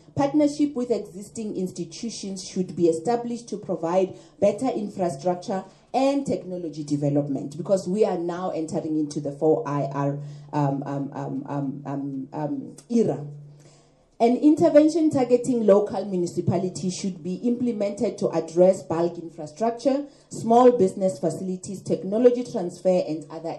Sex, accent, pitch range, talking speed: female, South African, 160-220 Hz, 105 wpm